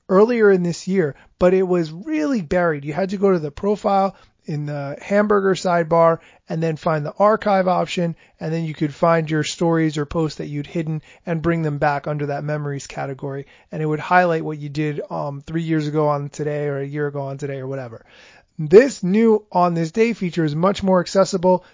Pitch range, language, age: 155-195 Hz, English, 30-49